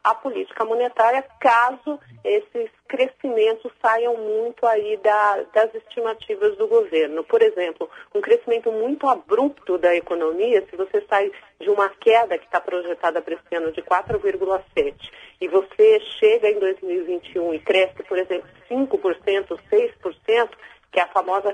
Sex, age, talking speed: female, 40-59, 140 wpm